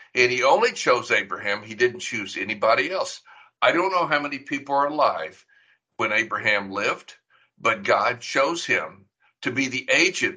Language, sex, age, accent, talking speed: English, male, 60-79, American, 170 wpm